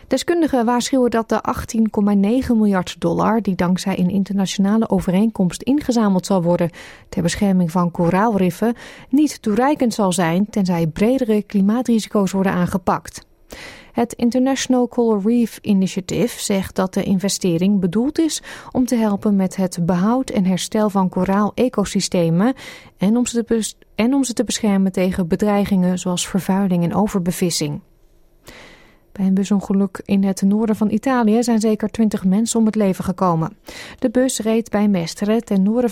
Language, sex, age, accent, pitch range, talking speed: Dutch, female, 30-49, Dutch, 190-235 Hz, 140 wpm